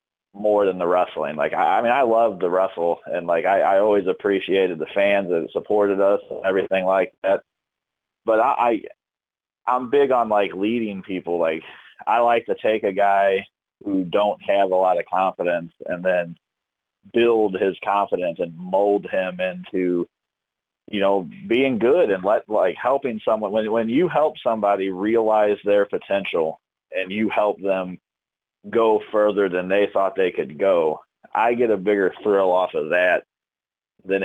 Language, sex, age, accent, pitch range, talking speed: English, male, 30-49, American, 95-110 Hz, 170 wpm